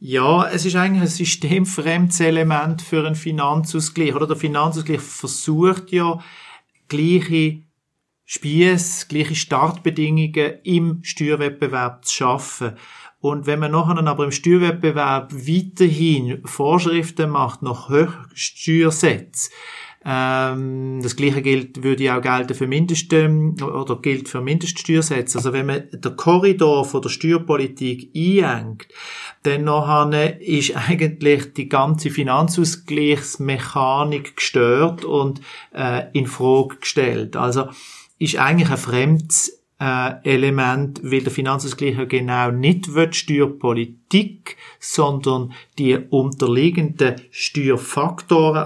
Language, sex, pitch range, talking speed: German, male, 130-160 Hz, 100 wpm